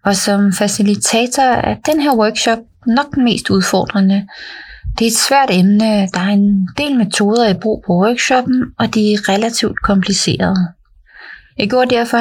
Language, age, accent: Danish, 30-49, native